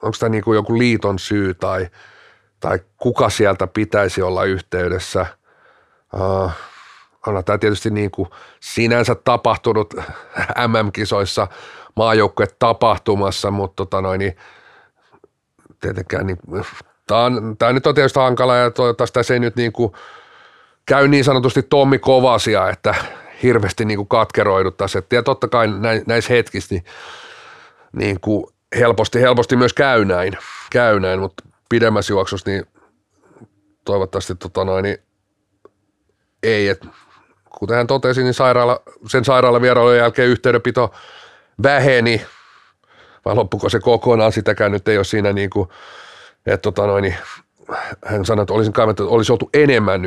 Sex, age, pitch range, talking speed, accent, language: male, 40-59, 100-120 Hz, 125 wpm, native, Finnish